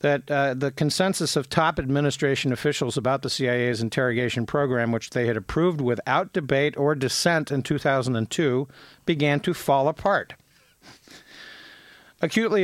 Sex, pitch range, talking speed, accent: male, 125-155 Hz, 135 wpm, American